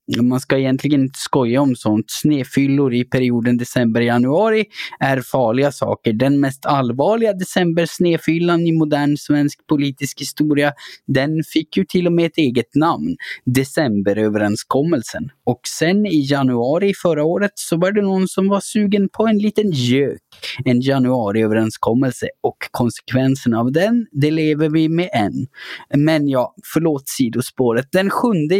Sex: male